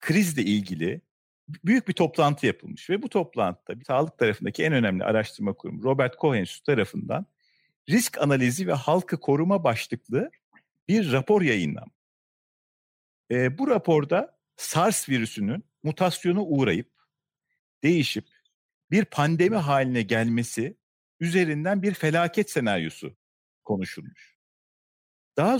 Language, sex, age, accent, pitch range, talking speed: Turkish, male, 50-69, native, 135-185 Hz, 110 wpm